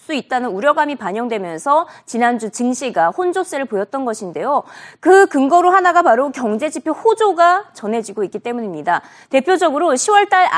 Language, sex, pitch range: Korean, female, 235-370 Hz